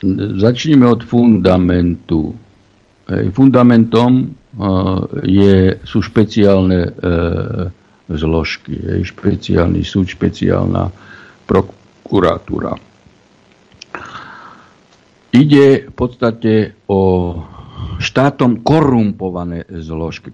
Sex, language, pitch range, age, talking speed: male, Slovak, 90-115 Hz, 60-79, 55 wpm